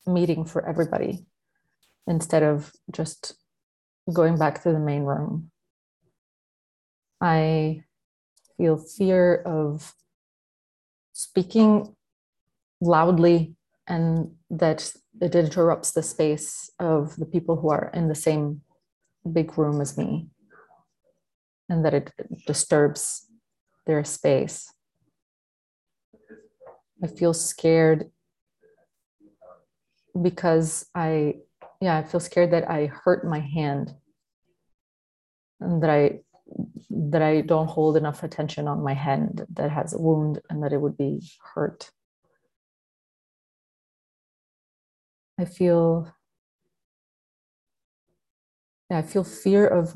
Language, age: English, 30-49